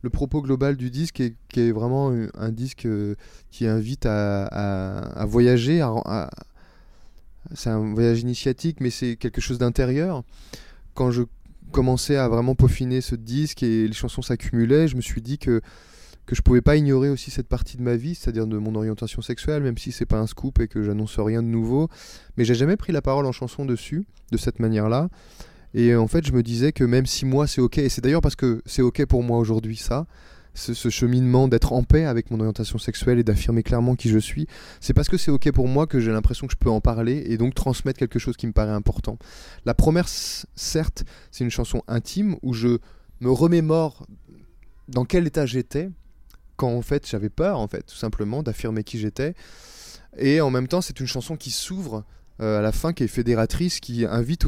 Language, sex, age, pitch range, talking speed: French, male, 20-39, 110-135 Hz, 215 wpm